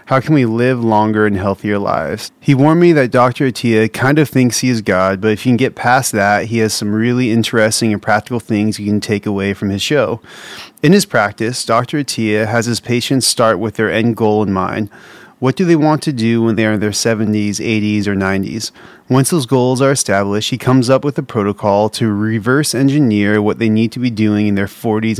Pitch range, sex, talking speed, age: 105-130 Hz, male, 225 wpm, 30-49